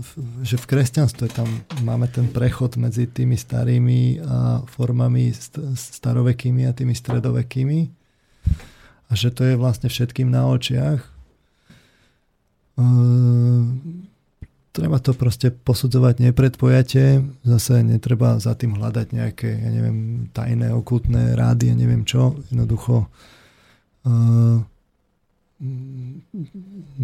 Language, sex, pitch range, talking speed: Slovak, male, 120-125 Hz, 105 wpm